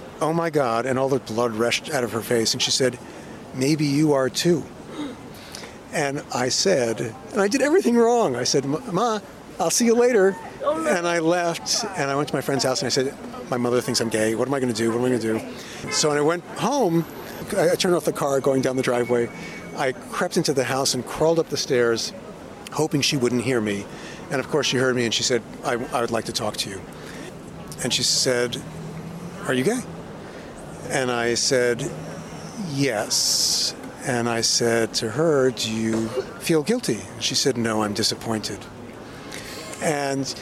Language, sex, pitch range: English, male, 115-155 Hz